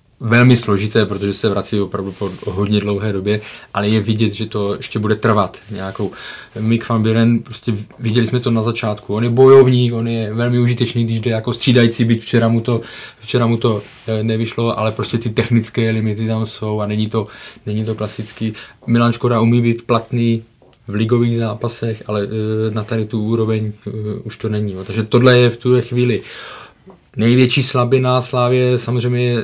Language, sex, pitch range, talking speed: Czech, male, 110-125 Hz, 175 wpm